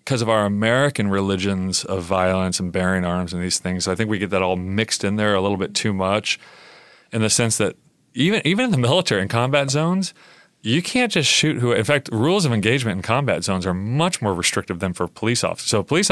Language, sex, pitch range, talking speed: English, male, 90-115 Hz, 240 wpm